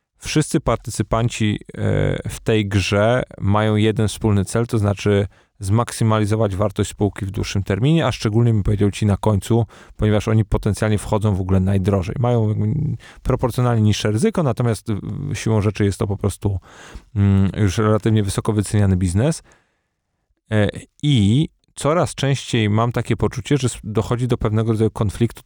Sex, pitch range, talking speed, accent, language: male, 100-115 Hz, 140 wpm, native, Polish